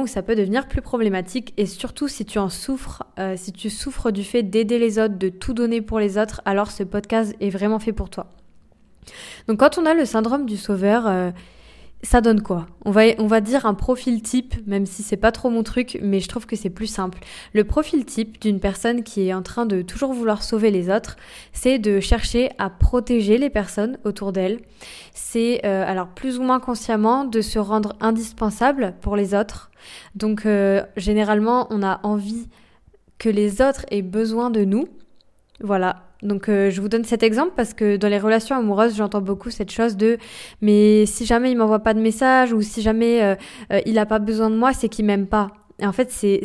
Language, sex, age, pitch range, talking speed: French, female, 20-39, 205-240 Hz, 215 wpm